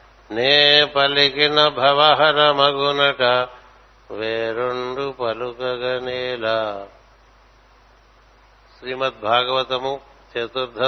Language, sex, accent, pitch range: Telugu, male, native, 120-135 Hz